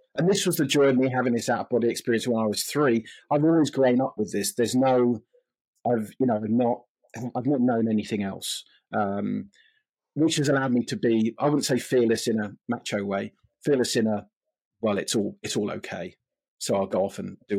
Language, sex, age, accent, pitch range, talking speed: English, male, 40-59, British, 115-150 Hz, 210 wpm